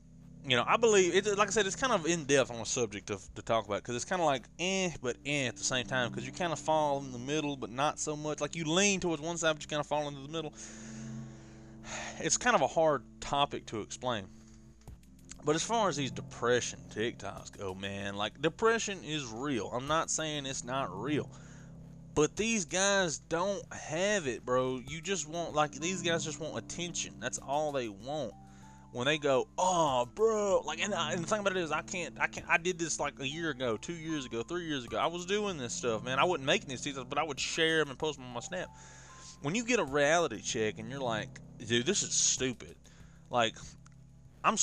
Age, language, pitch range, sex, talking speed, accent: 20-39, English, 115-165 Hz, male, 230 wpm, American